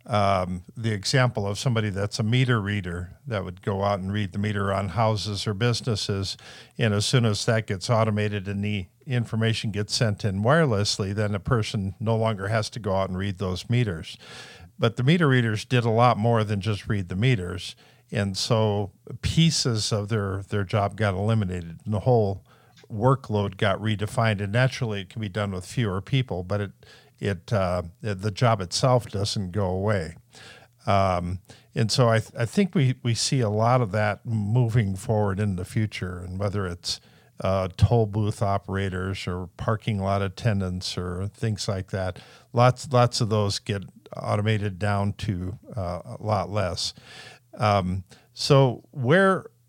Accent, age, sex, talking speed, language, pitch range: American, 50-69, male, 175 wpm, English, 100-120 Hz